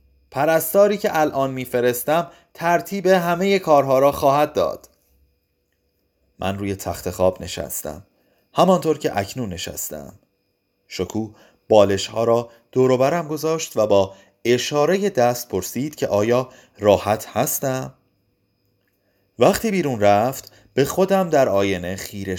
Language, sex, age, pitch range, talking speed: Persian, male, 30-49, 100-150 Hz, 110 wpm